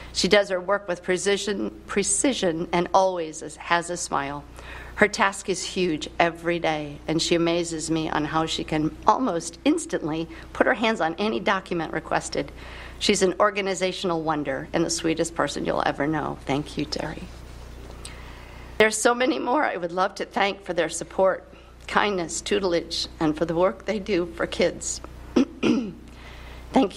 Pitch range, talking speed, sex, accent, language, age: 160-190 Hz, 160 wpm, female, American, English, 50-69